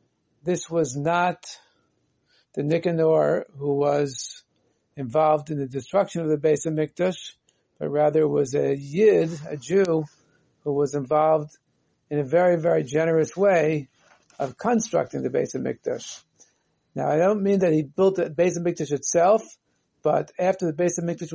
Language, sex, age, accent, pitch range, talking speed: English, male, 50-69, American, 150-180 Hz, 160 wpm